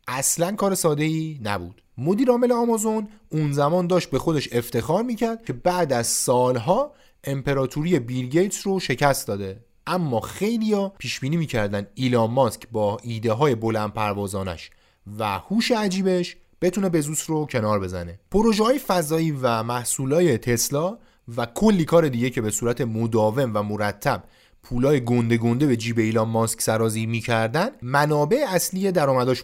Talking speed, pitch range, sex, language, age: 145 wpm, 115-180 Hz, male, Persian, 30-49